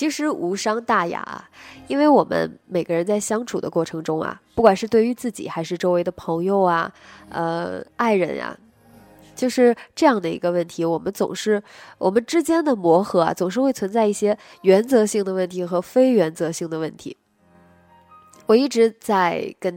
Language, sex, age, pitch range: Chinese, female, 20-39, 170-225 Hz